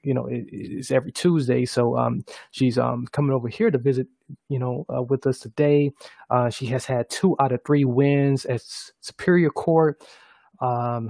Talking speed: 190 wpm